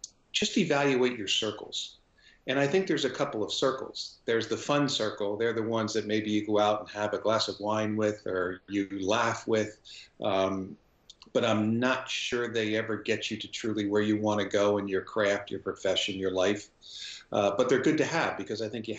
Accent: American